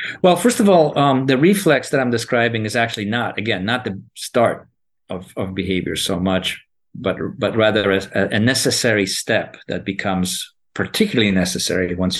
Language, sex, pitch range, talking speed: English, male, 95-125 Hz, 165 wpm